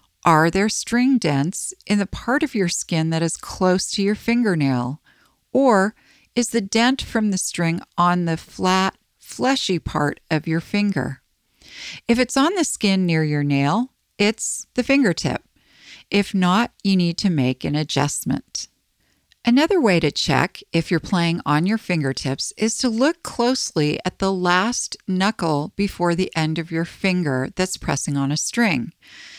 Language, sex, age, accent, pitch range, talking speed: English, female, 40-59, American, 150-215 Hz, 160 wpm